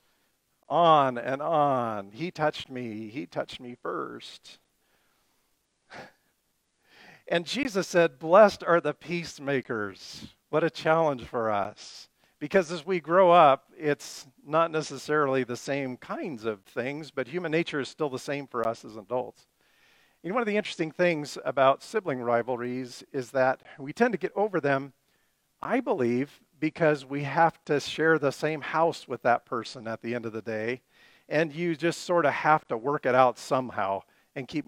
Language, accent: English, American